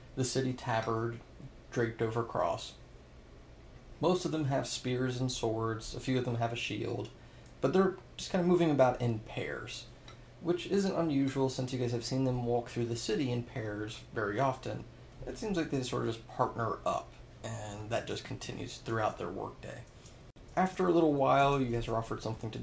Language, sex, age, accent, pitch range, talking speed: English, male, 30-49, American, 115-135 Hz, 195 wpm